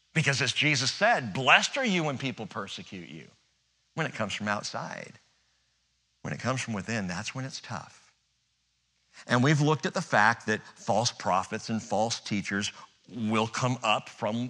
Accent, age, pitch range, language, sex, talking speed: American, 50-69, 100-140 Hz, English, male, 170 wpm